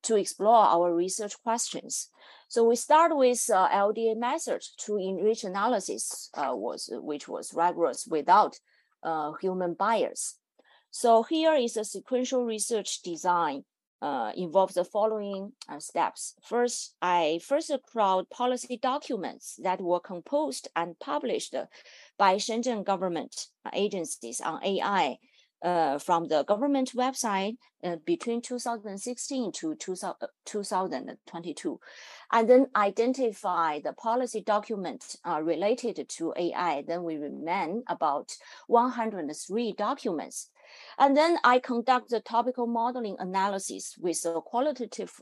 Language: English